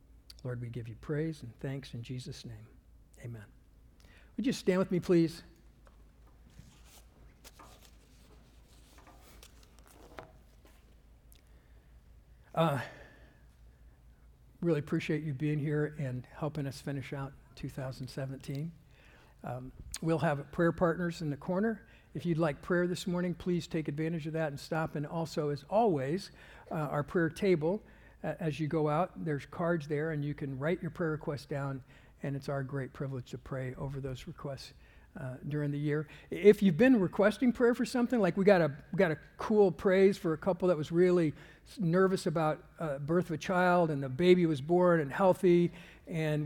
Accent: American